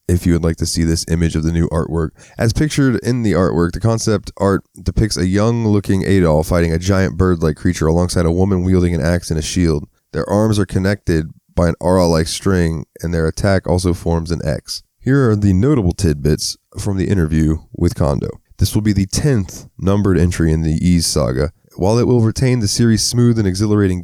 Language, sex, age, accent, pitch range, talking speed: English, male, 20-39, American, 85-100 Hz, 205 wpm